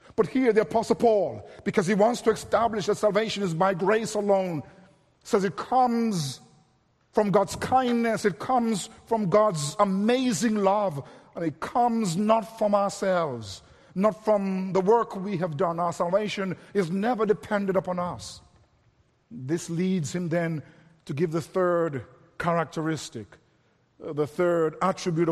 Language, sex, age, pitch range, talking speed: English, male, 50-69, 170-225 Hz, 140 wpm